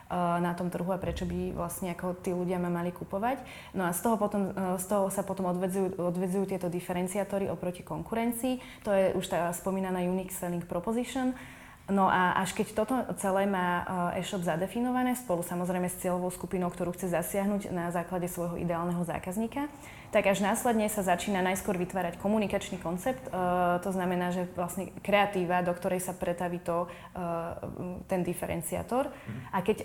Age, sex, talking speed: 20-39, female, 165 wpm